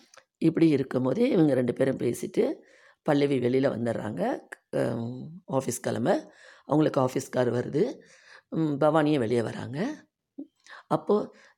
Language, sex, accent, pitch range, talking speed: Tamil, female, native, 125-165 Hz, 105 wpm